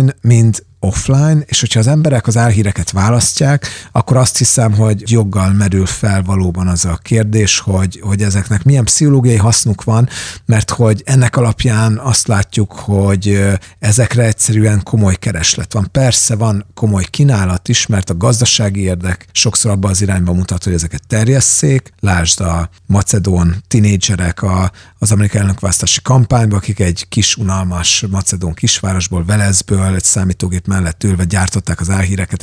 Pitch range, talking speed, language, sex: 95-120 Hz, 145 wpm, Hungarian, male